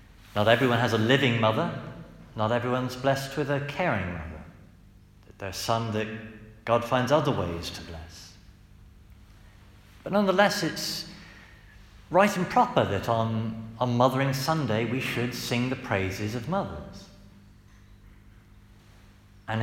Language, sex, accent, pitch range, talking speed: English, male, British, 105-145 Hz, 130 wpm